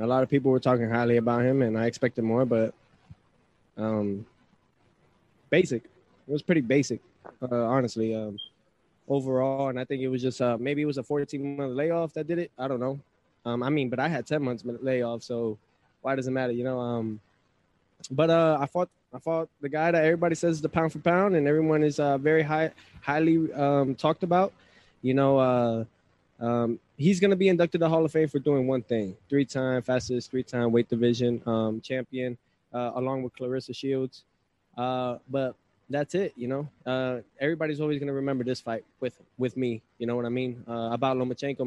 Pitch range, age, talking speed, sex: 120-155 Hz, 20-39, 210 wpm, male